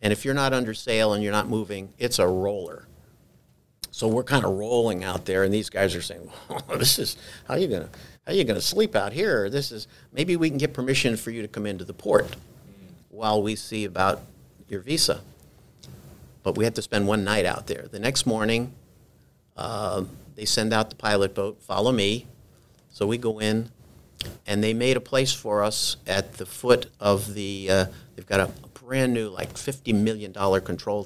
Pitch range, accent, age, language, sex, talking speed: 95-115 Hz, American, 50-69, English, male, 210 wpm